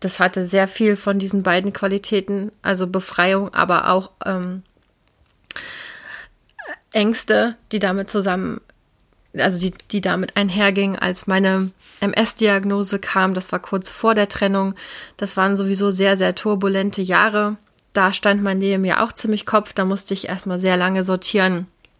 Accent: German